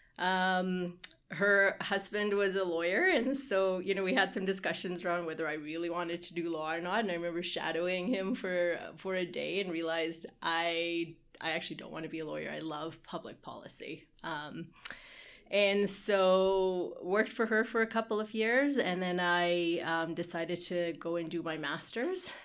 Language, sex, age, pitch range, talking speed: English, female, 30-49, 170-220 Hz, 185 wpm